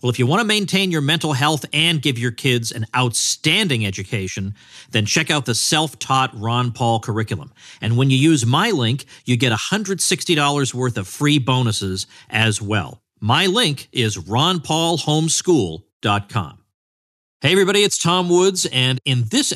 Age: 50-69